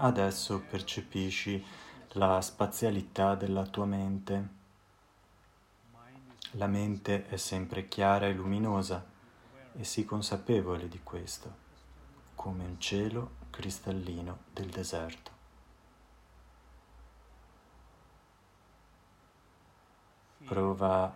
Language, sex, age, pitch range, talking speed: Italian, male, 30-49, 90-100 Hz, 75 wpm